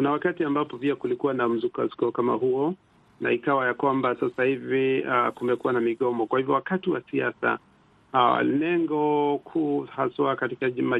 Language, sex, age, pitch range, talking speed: Swahili, male, 50-69, 125-155 Hz, 160 wpm